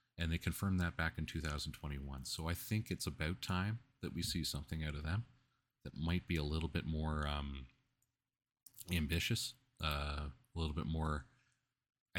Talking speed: 165 wpm